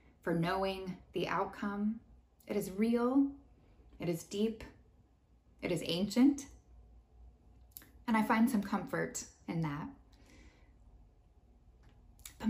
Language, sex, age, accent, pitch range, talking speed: English, female, 10-29, American, 180-230 Hz, 100 wpm